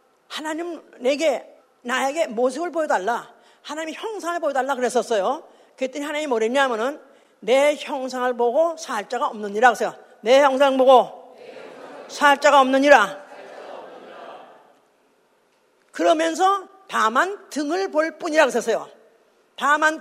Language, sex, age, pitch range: Korean, female, 40-59, 255-345 Hz